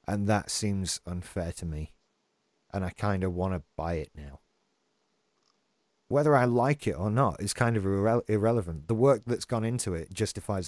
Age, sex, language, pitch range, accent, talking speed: 30-49, male, English, 95-120 Hz, British, 180 wpm